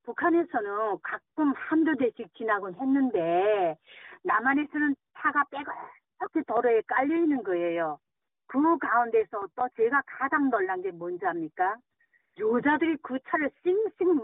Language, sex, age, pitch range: Korean, female, 40-59, 235-335 Hz